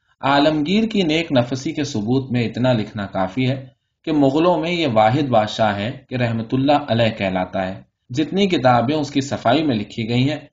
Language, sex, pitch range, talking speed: Urdu, male, 110-145 Hz, 190 wpm